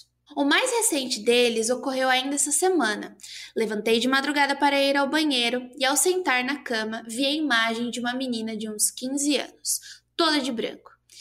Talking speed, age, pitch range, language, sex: 175 wpm, 20-39, 230-300 Hz, Portuguese, female